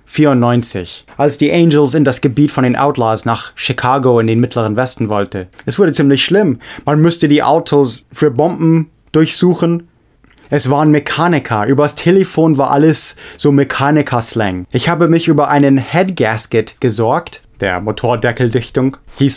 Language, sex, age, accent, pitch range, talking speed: English, male, 20-39, German, 115-150 Hz, 145 wpm